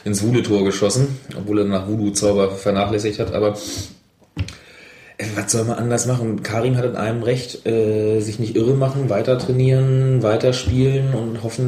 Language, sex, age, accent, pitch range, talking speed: German, male, 30-49, German, 105-135 Hz, 155 wpm